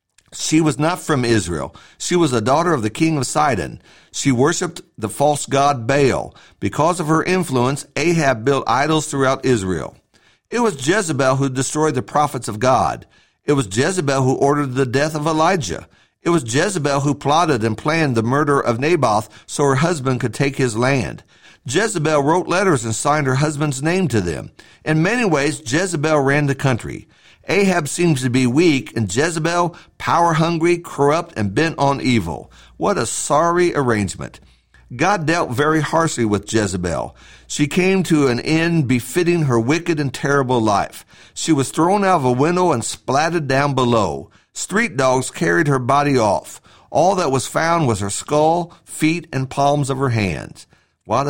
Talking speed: 170 wpm